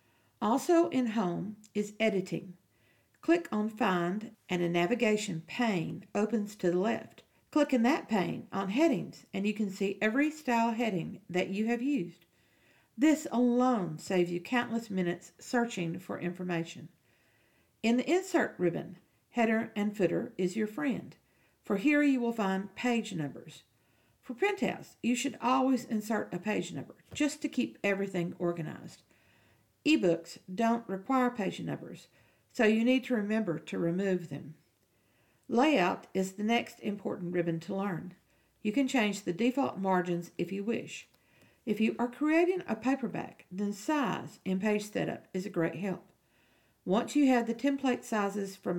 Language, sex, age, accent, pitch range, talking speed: English, female, 50-69, American, 180-245 Hz, 155 wpm